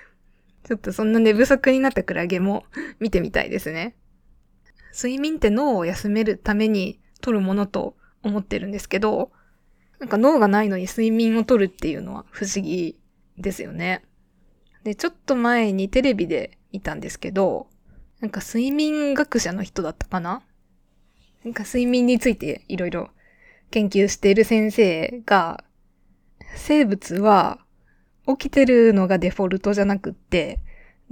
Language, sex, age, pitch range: Japanese, female, 20-39, 190-240 Hz